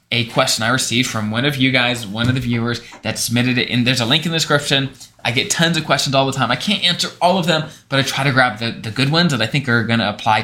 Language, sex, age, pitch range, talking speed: English, male, 20-39, 120-160 Hz, 300 wpm